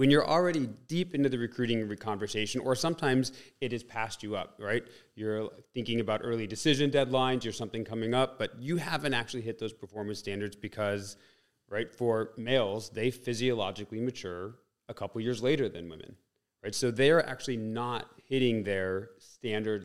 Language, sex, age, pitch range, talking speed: English, male, 30-49, 110-130 Hz, 165 wpm